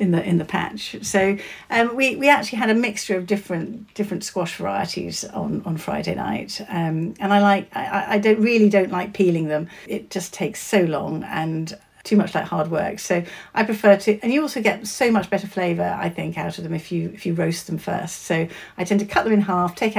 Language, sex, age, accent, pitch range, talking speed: English, female, 50-69, British, 170-205 Hz, 235 wpm